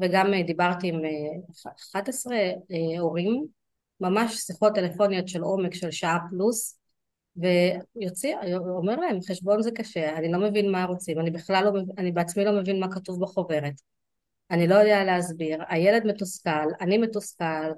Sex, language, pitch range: female, Hebrew, 175-205 Hz